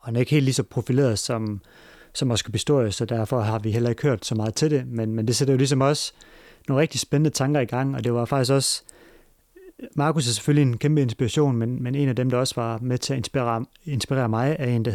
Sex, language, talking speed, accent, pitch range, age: male, Danish, 255 wpm, native, 115-140 Hz, 30-49